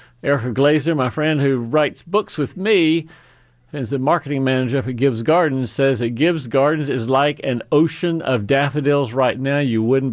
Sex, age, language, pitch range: male, 40-59, English, 120-145 Hz